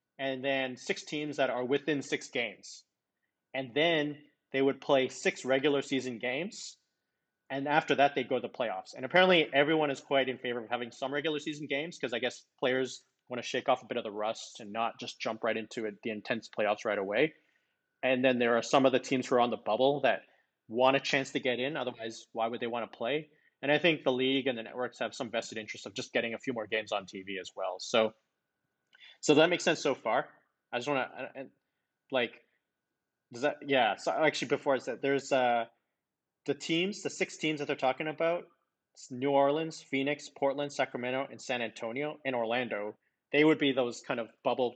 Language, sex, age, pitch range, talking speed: English, male, 30-49, 125-150 Hz, 220 wpm